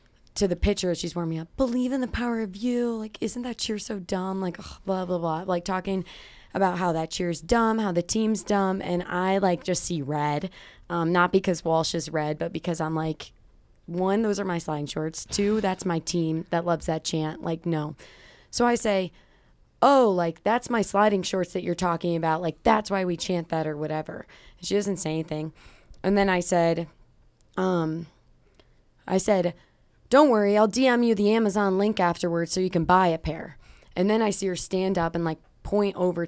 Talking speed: 205 wpm